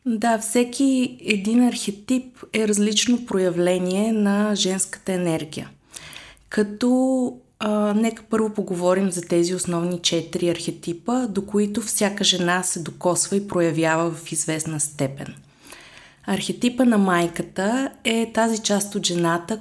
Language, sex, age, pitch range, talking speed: Bulgarian, female, 20-39, 170-210 Hz, 120 wpm